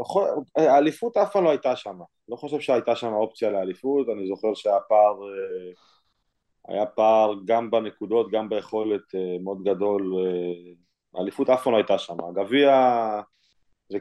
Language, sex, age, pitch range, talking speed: Hebrew, male, 20-39, 95-115 Hz, 135 wpm